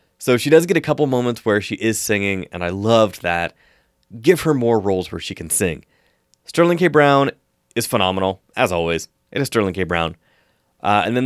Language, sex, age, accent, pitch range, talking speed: English, male, 20-39, American, 95-135 Hz, 205 wpm